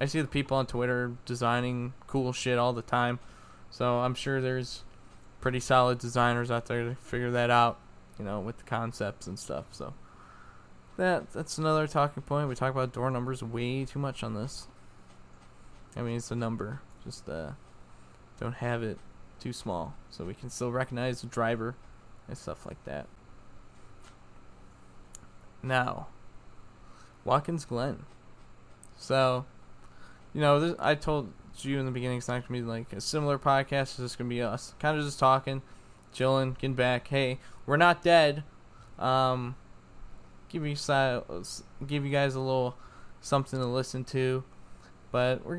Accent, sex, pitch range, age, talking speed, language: American, male, 115-135 Hz, 10-29, 165 wpm, English